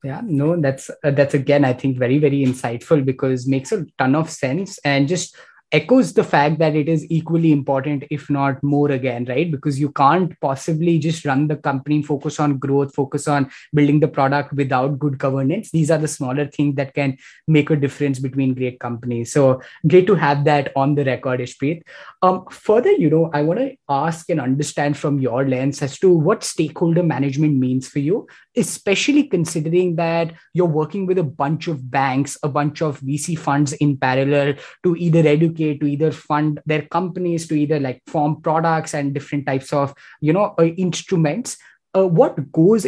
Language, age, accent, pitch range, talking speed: English, 20-39, Indian, 140-170 Hz, 190 wpm